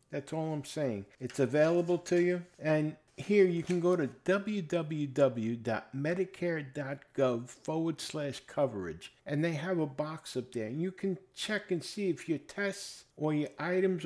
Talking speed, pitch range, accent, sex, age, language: 160 wpm, 125-175 Hz, American, male, 50-69, English